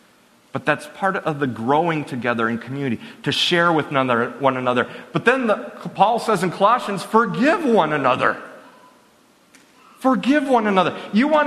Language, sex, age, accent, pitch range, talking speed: English, male, 40-59, American, 155-230 Hz, 155 wpm